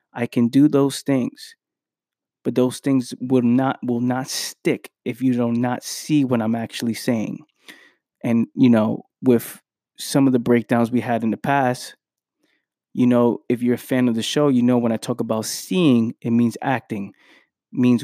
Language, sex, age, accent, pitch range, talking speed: English, male, 20-39, American, 120-135 Hz, 180 wpm